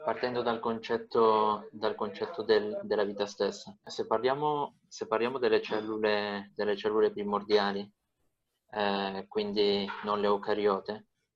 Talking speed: 120 wpm